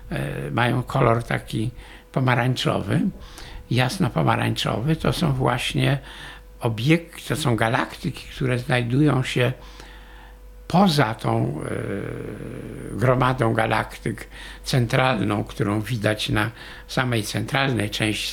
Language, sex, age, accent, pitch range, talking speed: Polish, male, 60-79, native, 110-145 Hz, 90 wpm